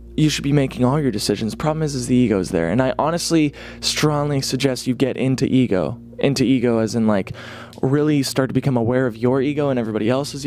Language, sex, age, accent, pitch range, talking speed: English, male, 20-39, American, 110-140 Hz, 225 wpm